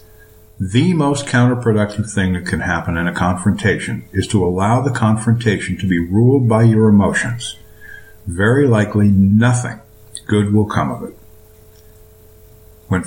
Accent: American